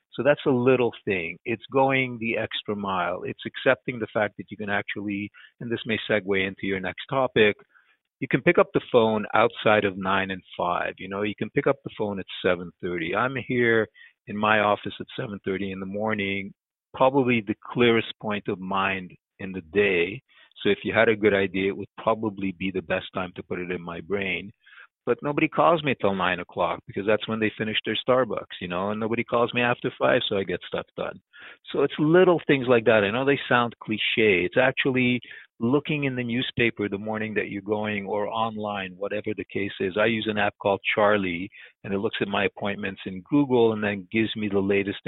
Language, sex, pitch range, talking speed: English, male, 100-120 Hz, 215 wpm